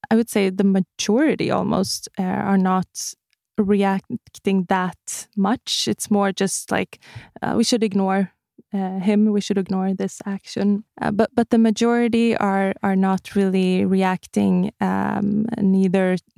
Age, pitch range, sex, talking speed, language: 20-39, 185-210 Hz, female, 135 wpm, English